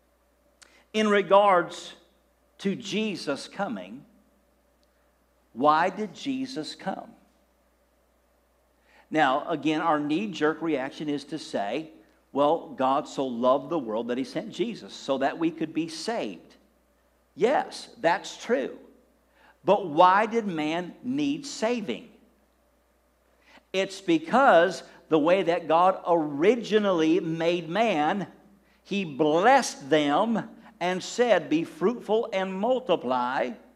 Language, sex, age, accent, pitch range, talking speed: English, male, 50-69, American, 170-240 Hz, 105 wpm